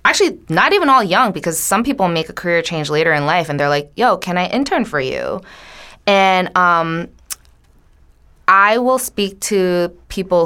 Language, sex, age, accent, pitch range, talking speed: English, female, 20-39, American, 155-195 Hz, 180 wpm